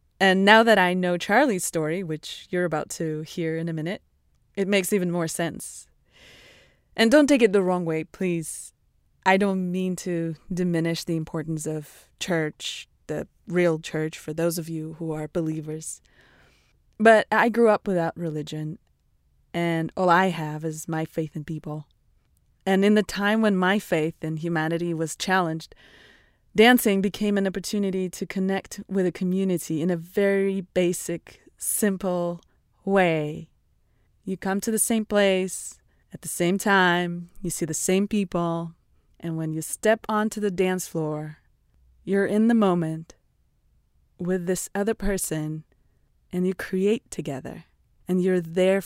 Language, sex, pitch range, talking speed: English, female, 160-195 Hz, 155 wpm